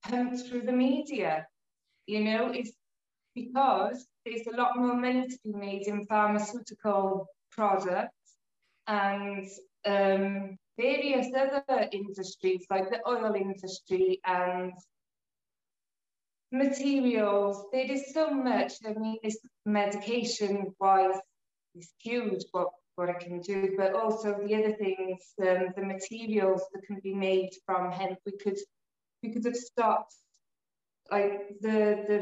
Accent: British